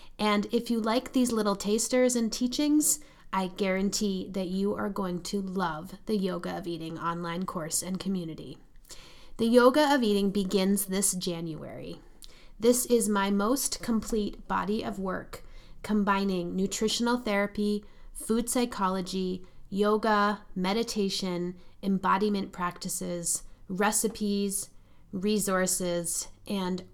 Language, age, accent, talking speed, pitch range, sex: English, 30-49, American, 115 wpm, 185-215 Hz, female